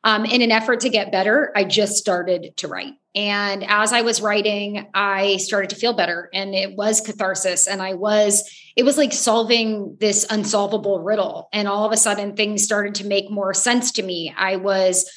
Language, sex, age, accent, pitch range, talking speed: English, female, 30-49, American, 195-220 Hz, 200 wpm